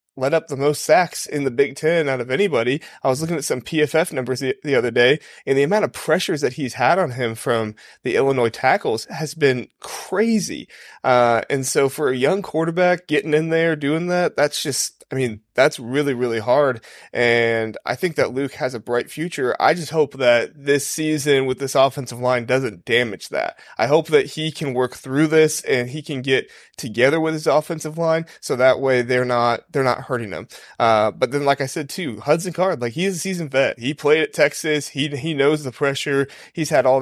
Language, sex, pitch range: English, male, 125-155 Hz